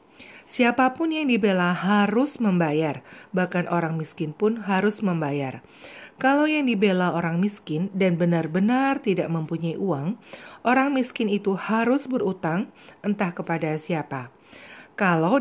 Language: Indonesian